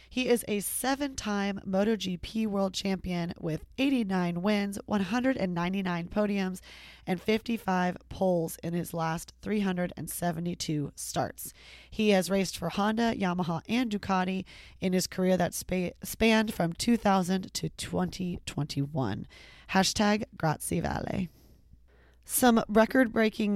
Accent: American